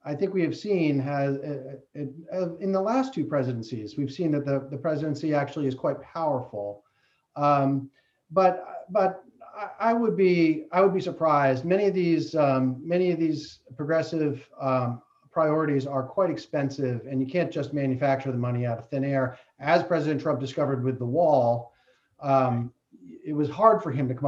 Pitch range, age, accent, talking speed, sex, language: 135-170 Hz, 40-59, American, 185 wpm, male, English